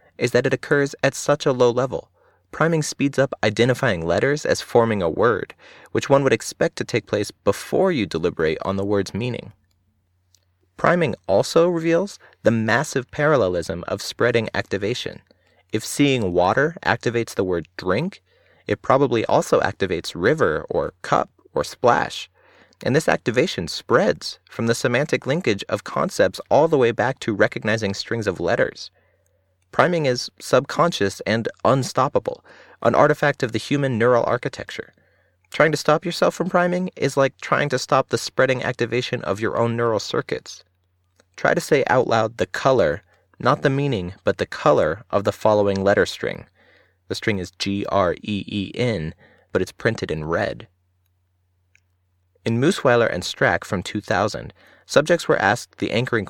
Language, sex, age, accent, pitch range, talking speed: English, male, 30-49, American, 95-140 Hz, 155 wpm